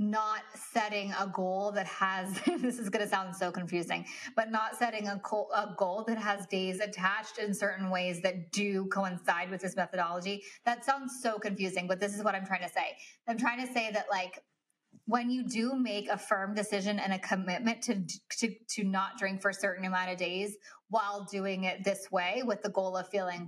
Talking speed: 210 wpm